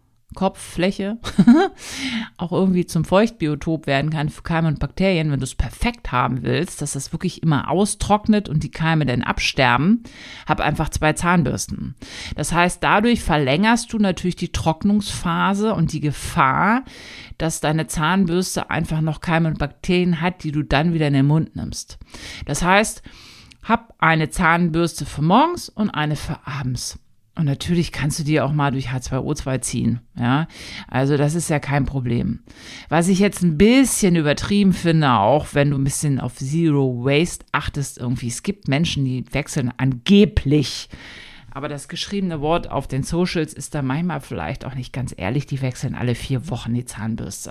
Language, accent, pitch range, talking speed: German, German, 135-180 Hz, 170 wpm